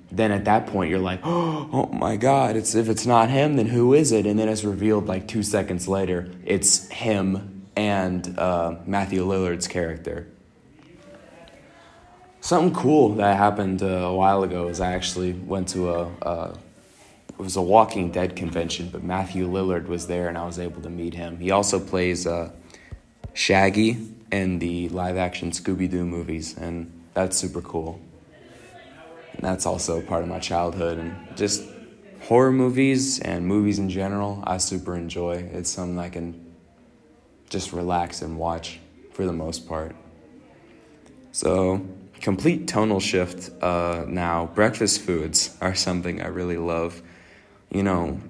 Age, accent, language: 20-39, American, English